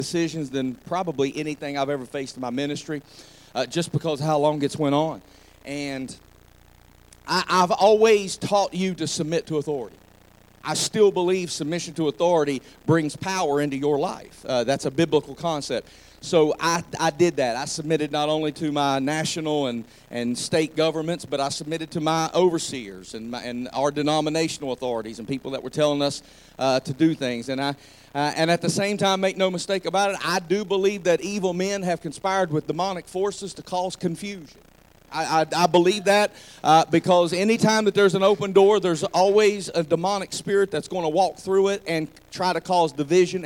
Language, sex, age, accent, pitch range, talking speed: English, male, 40-59, American, 150-185 Hz, 195 wpm